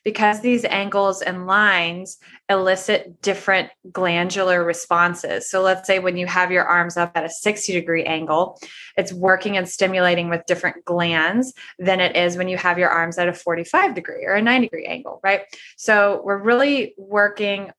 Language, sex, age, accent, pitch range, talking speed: English, female, 20-39, American, 180-210 Hz, 175 wpm